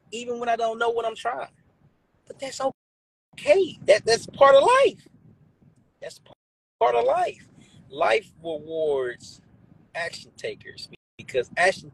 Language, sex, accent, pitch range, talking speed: English, male, American, 145-230 Hz, 130 wpm